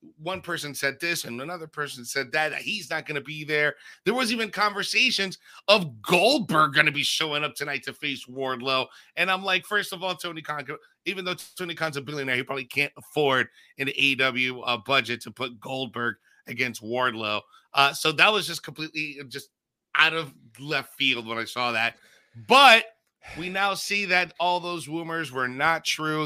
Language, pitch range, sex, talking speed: English, 130-165 Hz, male, 190 wpm